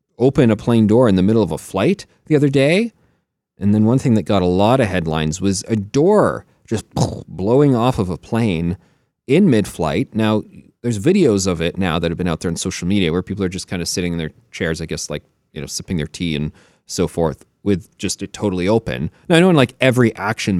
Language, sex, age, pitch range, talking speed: English, male, 30-49, 85-115 Hz, 240 wpm